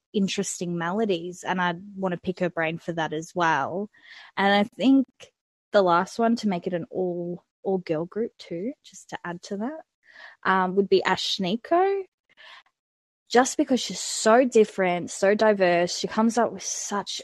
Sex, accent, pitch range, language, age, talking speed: female, Australian, 180-210 Hz, English, 20-39, 175 wpm